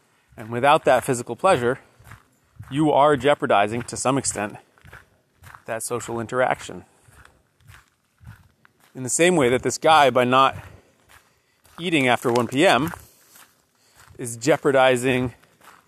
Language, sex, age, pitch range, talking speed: English, male, 30-49, 115-135 Hz, 105 wpm